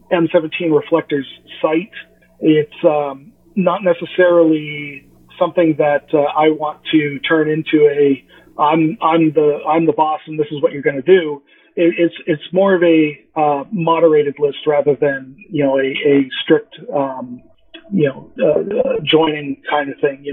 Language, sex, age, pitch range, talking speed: English, male, 40-59, 145-165 Hz, 165 wpm